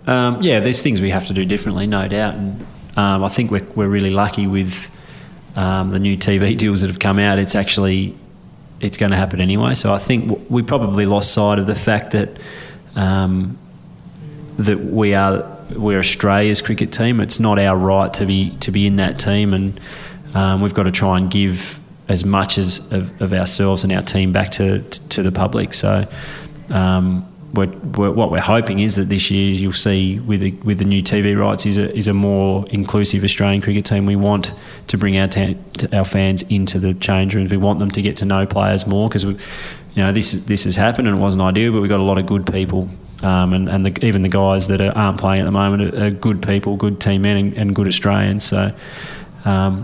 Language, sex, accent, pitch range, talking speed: English, male, Australian, 95-105 Hz, 225 wpm